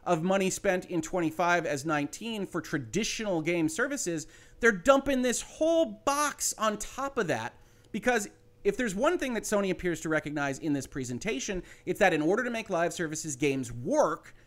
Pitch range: 135-200 Hz